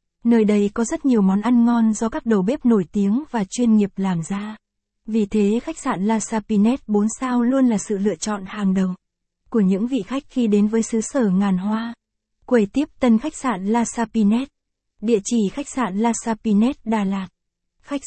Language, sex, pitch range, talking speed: Vietnamese, female, 210-245 Hz, 205 wpm